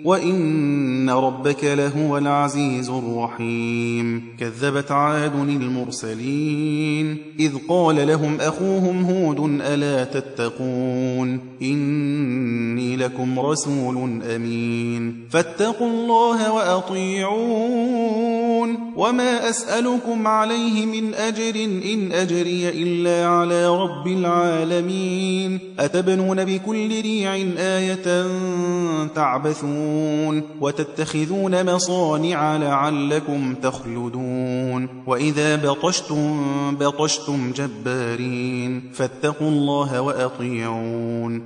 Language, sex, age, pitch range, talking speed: Persian, male, 30-49, 130-185 Hz, 70 wpm